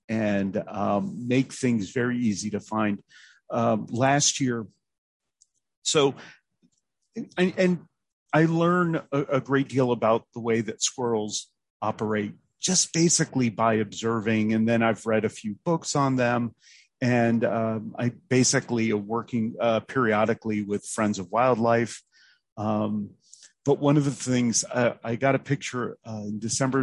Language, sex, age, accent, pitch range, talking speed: English, male, 40-59, American, 105-125 Hz, 145 wpm